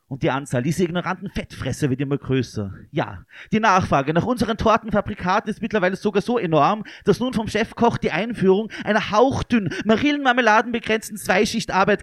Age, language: 30-49, German